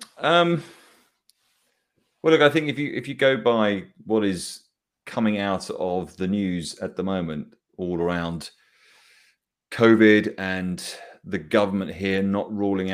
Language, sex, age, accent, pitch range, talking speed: English, male, 30-49, British, 90-105 Hz, 140 wpm